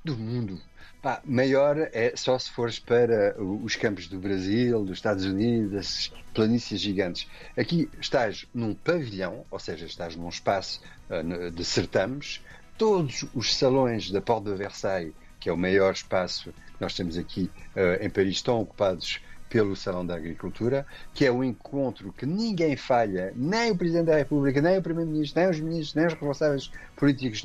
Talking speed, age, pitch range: 170 wpm, 50-69, 100-160 Hz